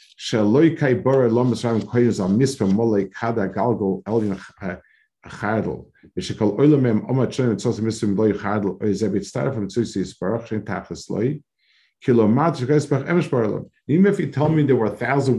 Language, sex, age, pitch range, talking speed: English, male, 50-69, 105-135 Hz, 40 wpm